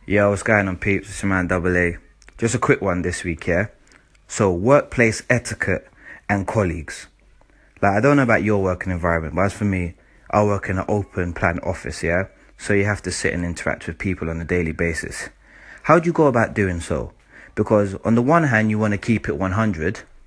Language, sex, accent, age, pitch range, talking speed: English, male, British, 20-39, 90-110 Hz, 215 wpm